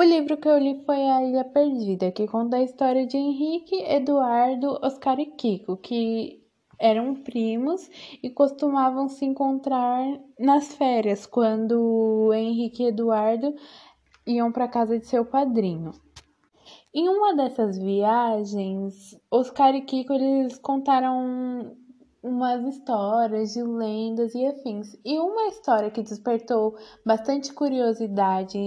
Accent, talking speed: Brazilian, 130 wpm